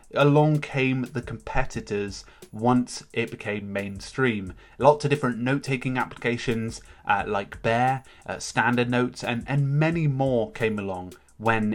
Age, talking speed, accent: 30-49, 135 wpm, British